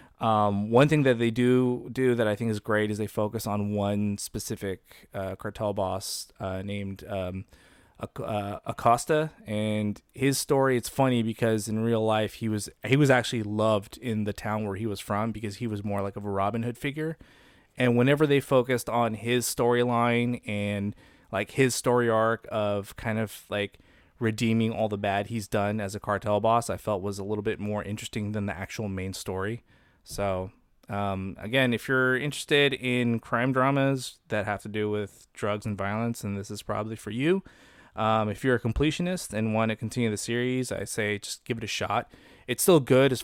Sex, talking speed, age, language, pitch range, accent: male, 195 wpm, 20-39, English, 105-120 Hz, American